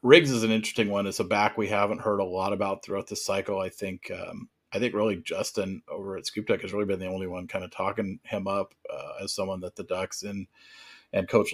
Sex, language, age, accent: male, English, 40-59, American